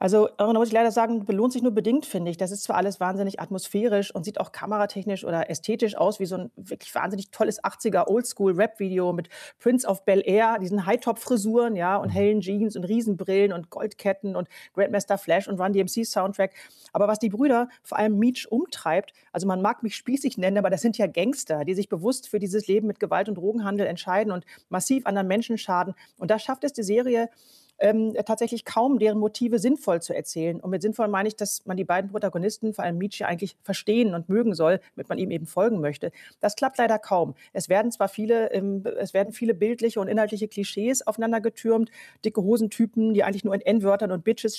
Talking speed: 205 wpm